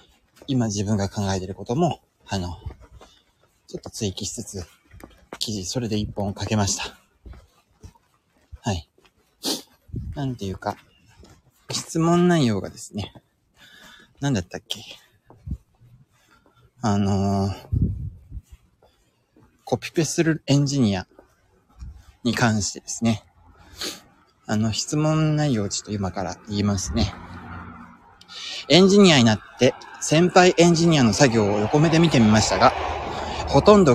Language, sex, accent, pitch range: Japanese, male, native, 100-150 Hz